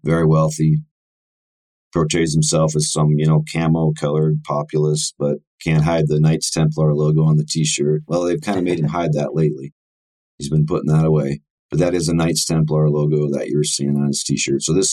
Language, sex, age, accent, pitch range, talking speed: English, male, 40-59, American, 70-80 Hz, 195 wpm